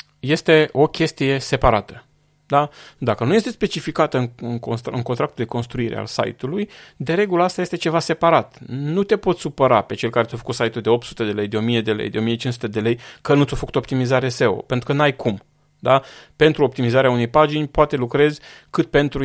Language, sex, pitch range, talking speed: Romanian, male, 115-145 Hz, 190 wpm